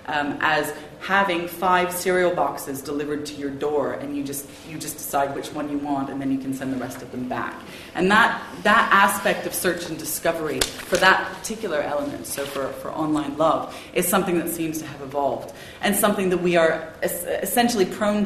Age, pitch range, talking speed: 30-49, 145-185 Hz, 205 wpm